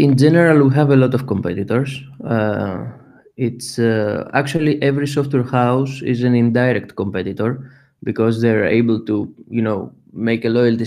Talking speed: 155 wpm